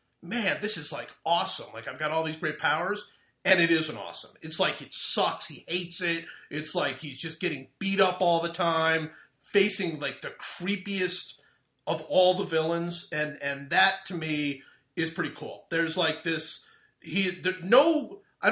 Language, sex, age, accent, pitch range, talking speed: English, male, 30-49, American, 150-185 Hz, 180 wpm